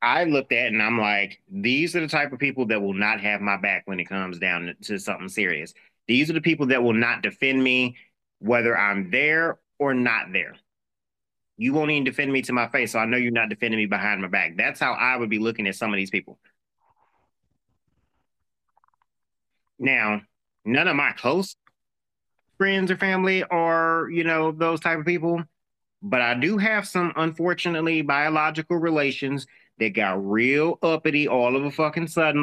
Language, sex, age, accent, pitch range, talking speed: English, male, 30-49, American, 115-145 Hz, 185 wpm